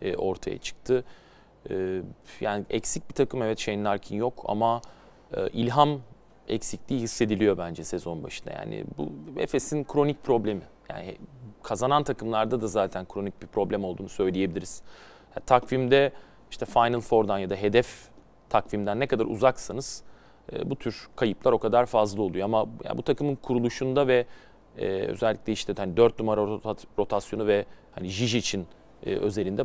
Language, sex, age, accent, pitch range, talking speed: Turkish, male, 30-49, native, 105-125 Hz, 140 wpm